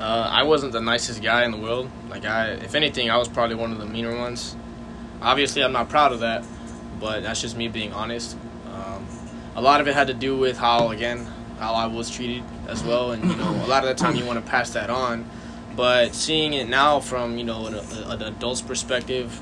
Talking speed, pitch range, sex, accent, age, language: 230 wpm, 115-130 Hz, male, American, 10-29, English